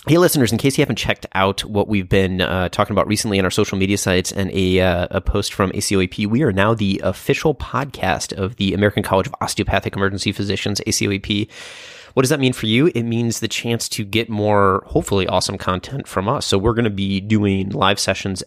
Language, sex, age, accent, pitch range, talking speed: English, male, 30-49, American, 95-105 Hz, 220 wpm